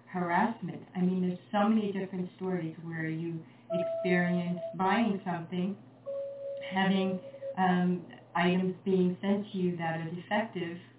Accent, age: American, 40-59